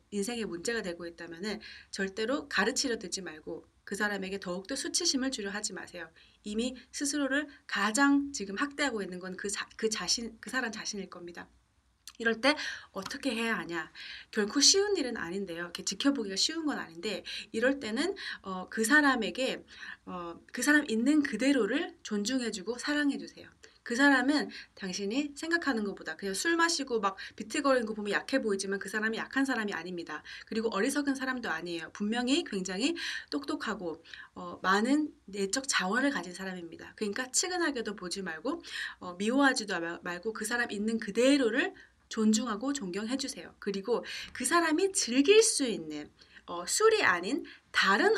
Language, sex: Korean, female